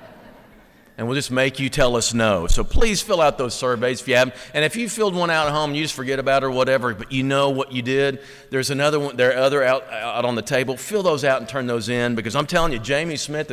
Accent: American